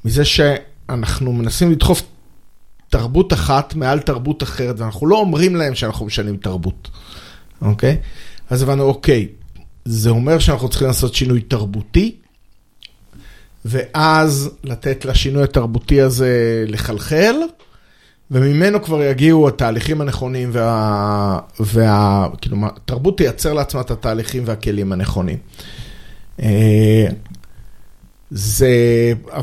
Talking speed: 100 wpm